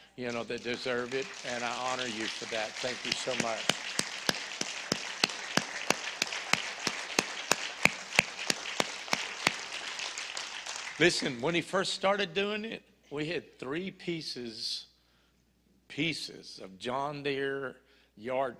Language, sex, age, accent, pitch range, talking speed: English, male, 60-79, American, 110-130 Hz, 100 wpm